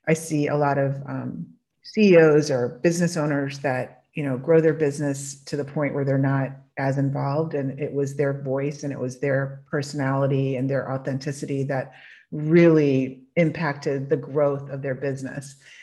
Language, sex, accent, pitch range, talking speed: English, female, American, 140-170 Hz, 170 wpm